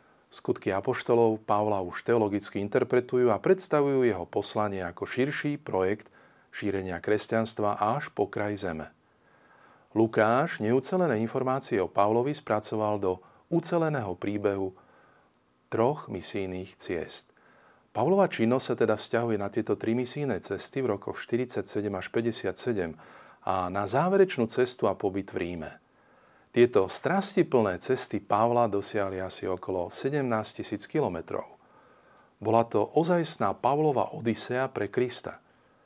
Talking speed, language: 120 wpm, Slovak